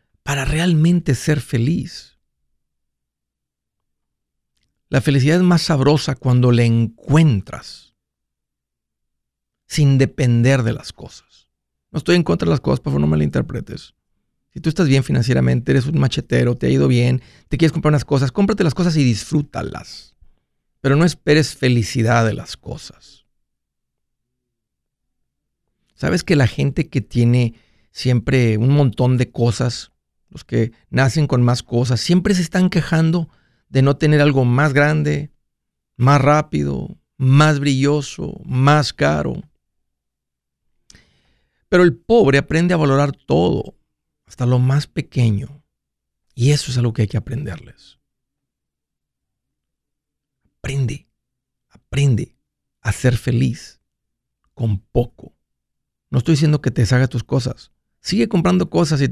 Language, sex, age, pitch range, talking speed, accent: Spanish, male, 50-69, 115-150 Hz, 130 wpm, Mexican